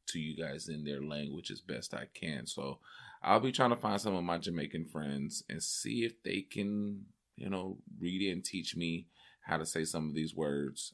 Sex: male